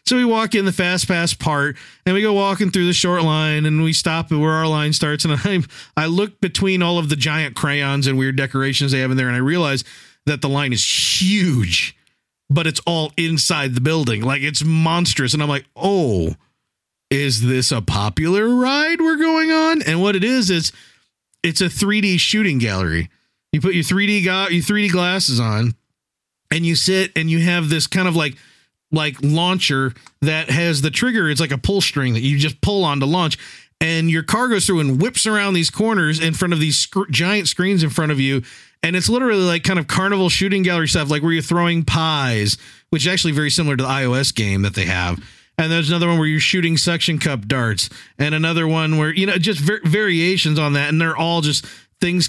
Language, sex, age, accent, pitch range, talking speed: English, male, 40-59, American, 140-185 Hz, 220 wpm